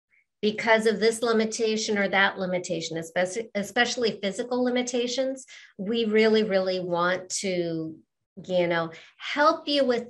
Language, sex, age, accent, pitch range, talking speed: English, female, 50-69, American, 180-225 Hz, 125 wpm